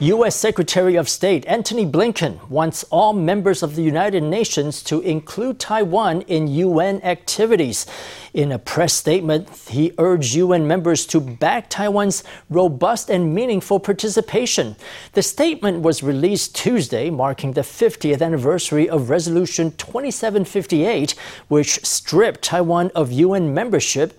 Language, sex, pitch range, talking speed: English, male, 150-190 Hz, 130 wpm